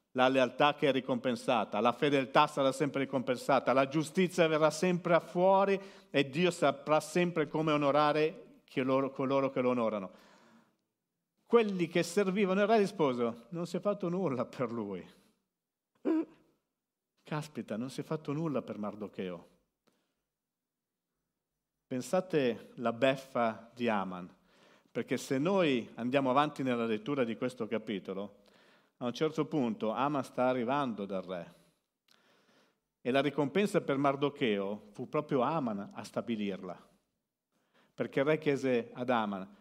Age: 50-69